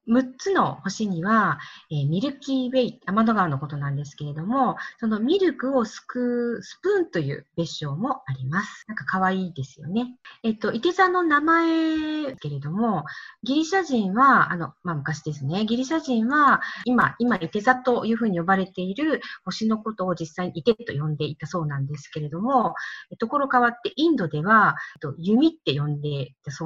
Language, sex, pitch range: Japanese, female, 170-260 Hz